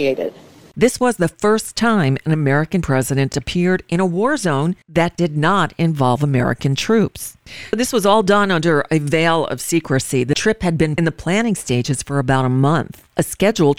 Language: English